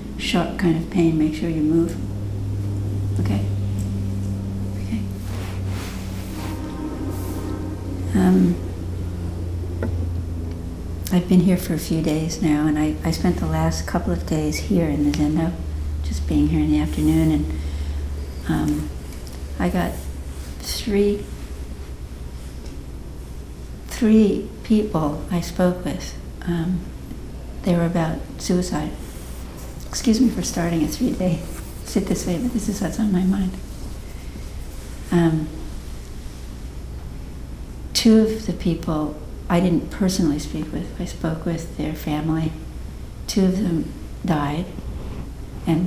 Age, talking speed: 60-79, 115 wpm